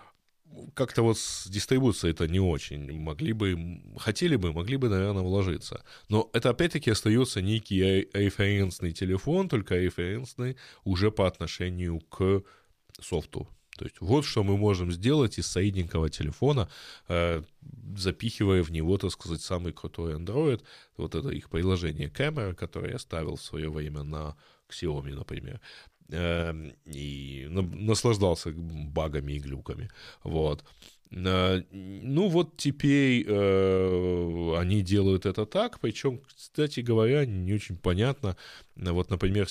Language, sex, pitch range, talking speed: Russian, male, 85-110 Hz, 125 wpm